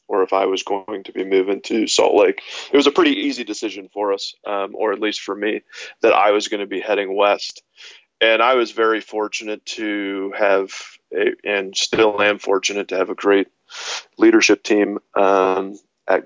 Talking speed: 190 wpm